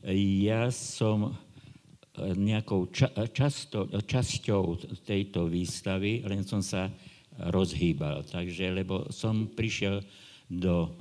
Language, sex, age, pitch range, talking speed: Slovak, male, 50-69, 90-110 Hz, 85 wpm